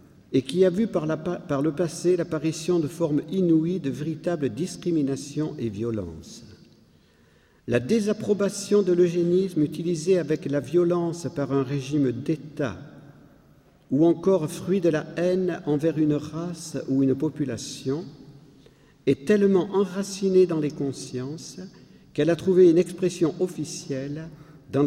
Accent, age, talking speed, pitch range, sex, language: French, 50-69, 135 wpm, 145-190 Hz, male, French